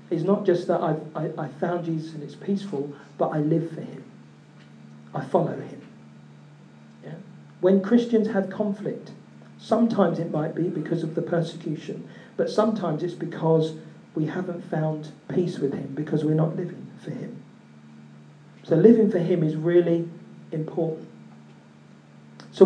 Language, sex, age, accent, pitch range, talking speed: English, male, 40-59, British, 150-180 Hz, 150 wpm